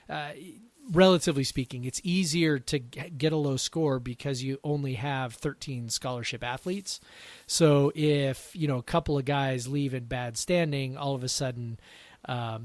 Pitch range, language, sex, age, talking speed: 130-155 Hz, English, male, 30-49, 160 wpm